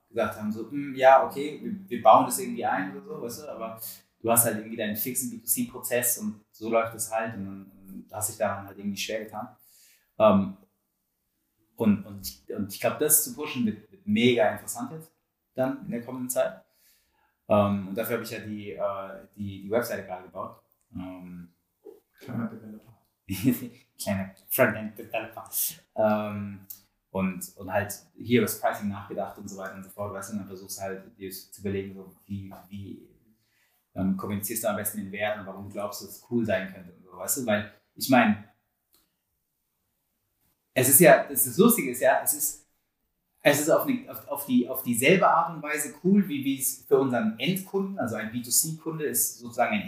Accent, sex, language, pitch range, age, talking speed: German, male, German, 100-130 Hz, 20-39, 175 wpm